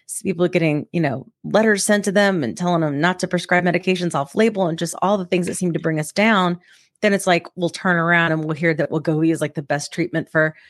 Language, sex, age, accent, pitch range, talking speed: English, female, 30-49, American, 175-220 Hz, 260 wpm